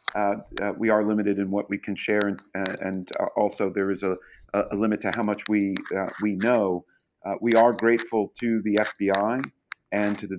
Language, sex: English, male